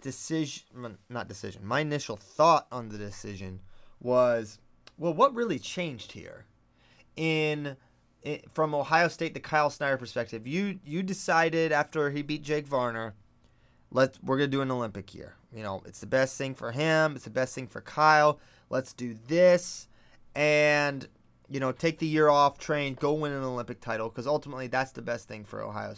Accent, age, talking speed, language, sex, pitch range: American, 30-49, 180 wpm, English, male, 120-160 Hz